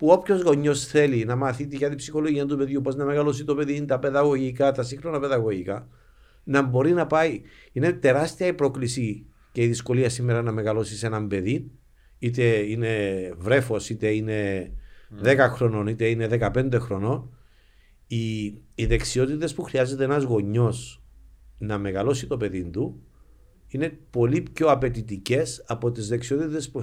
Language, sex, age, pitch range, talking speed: Greek, male, 50-69, 105-140 Hz, 155 wpm